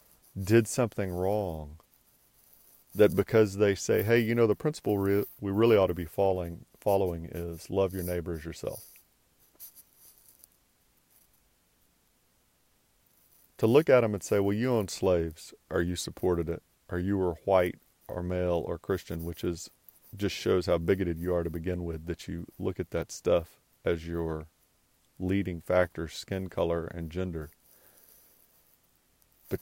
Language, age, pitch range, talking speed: English, 40-59, 85-100 Hz, 150 wpm